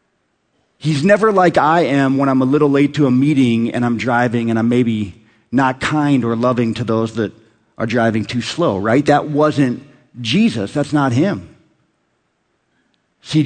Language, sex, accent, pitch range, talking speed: English, male, American, 115-150 Hz, 170 wpm